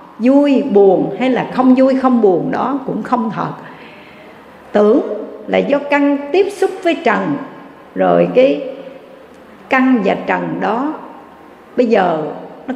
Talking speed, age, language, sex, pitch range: 135 wpm, 60-79, Vietnamese, female, 255-290 Hz